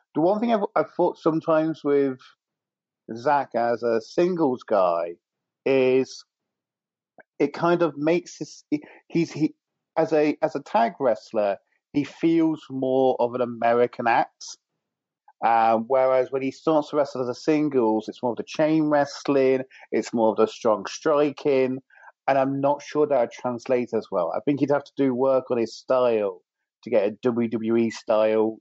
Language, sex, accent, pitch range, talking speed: English, male, British, 115-150 Hz, 160 wpm